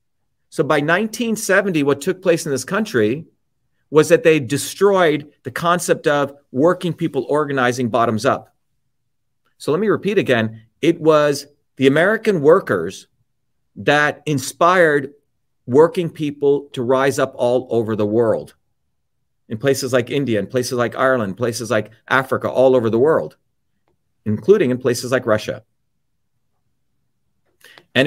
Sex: male